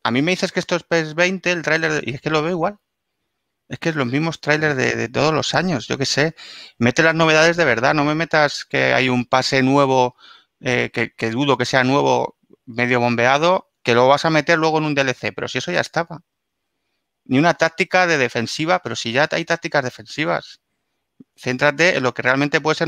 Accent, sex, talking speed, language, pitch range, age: Spanish, male, 220 wpm, English, 130-170 Hz, 30-49